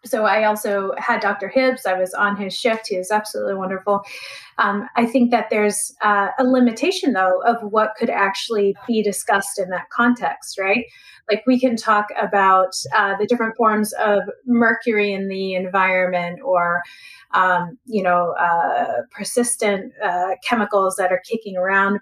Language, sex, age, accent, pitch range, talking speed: English, female, 30-49, American, 195-240 Hz, 165 wpm